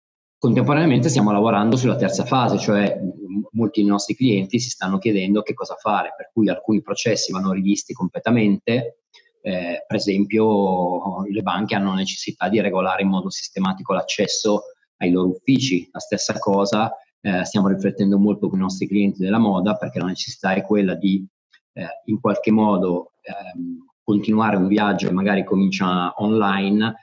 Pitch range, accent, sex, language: 95-110 Hz, native, male, Italian